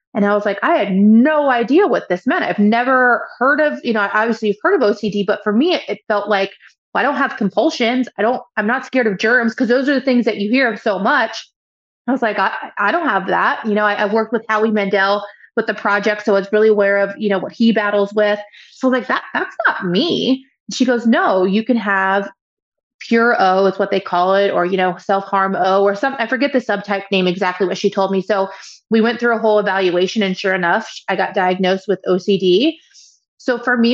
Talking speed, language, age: 240 wpm, English, 30-49